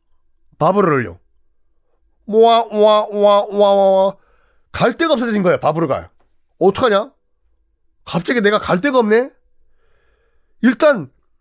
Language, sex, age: Korean, male, 40-59